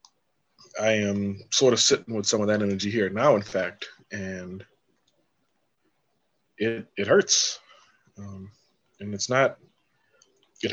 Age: 20-39